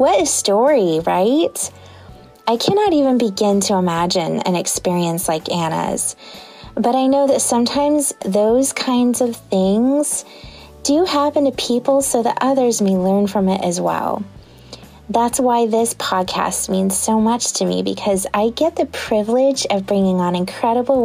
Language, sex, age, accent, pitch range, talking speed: English, female, 20-39, American, 190-260 Hz, 155 wpm